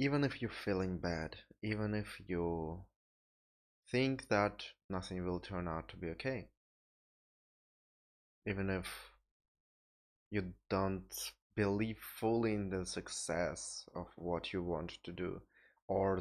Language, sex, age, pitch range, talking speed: English, male, 20-39, 85-105 Hz, 120 wpm